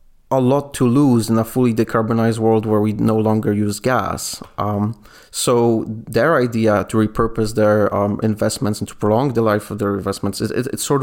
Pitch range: 105-120 Hz